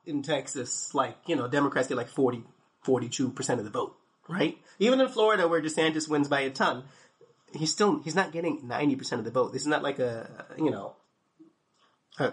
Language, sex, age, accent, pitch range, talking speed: English, male, 30-49, American, 140-180 Hz, 205 wpm